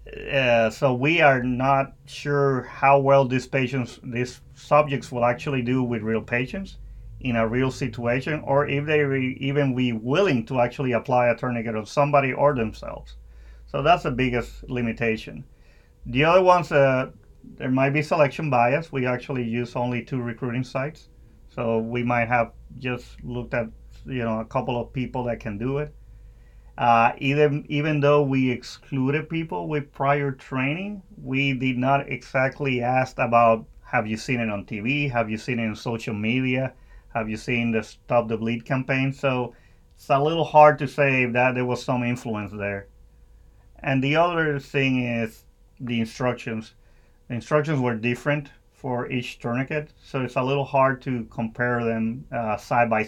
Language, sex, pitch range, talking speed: English, male, 115-140 Hz, 170 wpm